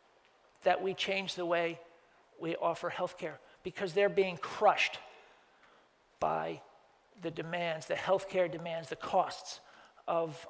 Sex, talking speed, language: male, 125 wpm, English